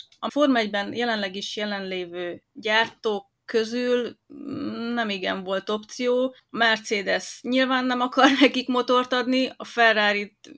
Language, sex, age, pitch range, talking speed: Hungarian, female, 30-49, 205-250 Hz, 120 wpm